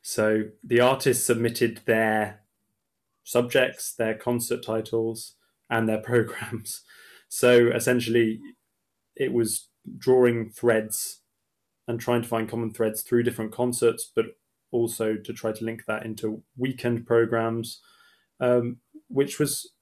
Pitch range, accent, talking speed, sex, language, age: 110-120 Hz, British, 120 wpm, male, English, 20-39